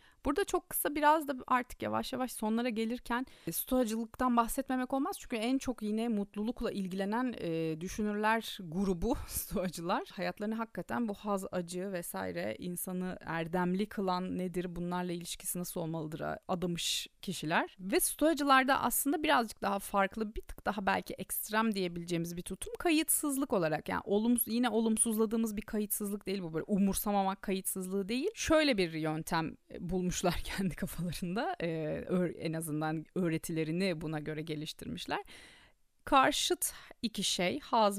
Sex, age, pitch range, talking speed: female, 30-49, 180-250 Hz, 135 wpm